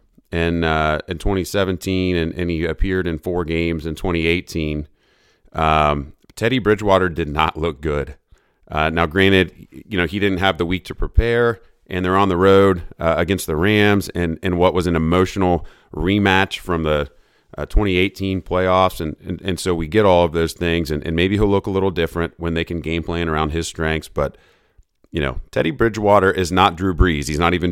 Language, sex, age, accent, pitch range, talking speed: English, male, 30-49, American, 80-95 Hz, 195 wpm